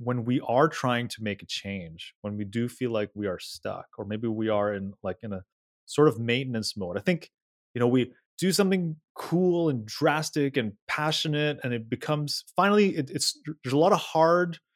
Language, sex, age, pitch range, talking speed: English, male, 30-49, 110-155 Hz, 205 wpm